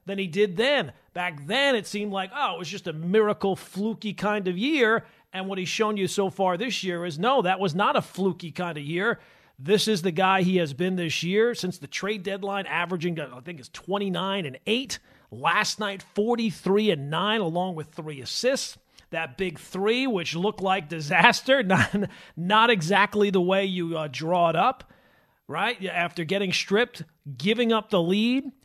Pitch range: 175-215 Hz